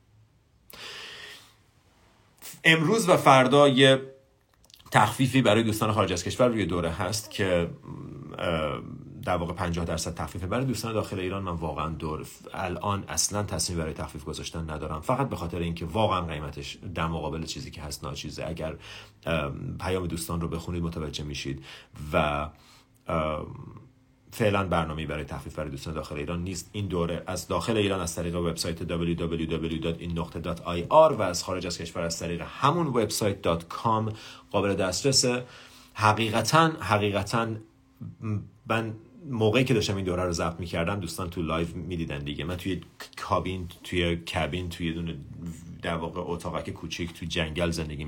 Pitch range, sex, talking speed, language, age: 85-105 Hz, male, 145 wpm, Persian, 40-59